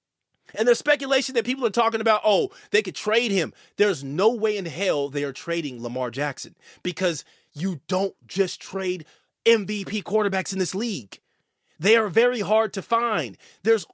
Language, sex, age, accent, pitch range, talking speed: English, male, 30-49, American, 190-245 Hz, 170 wpm